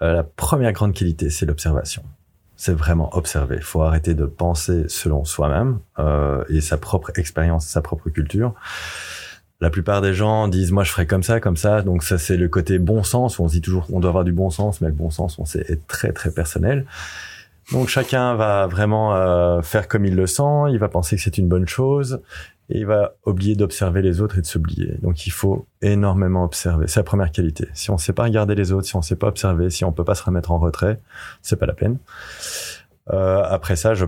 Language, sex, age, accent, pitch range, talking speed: French, male, 30-49, French, 85-105 Hz, 230 wpm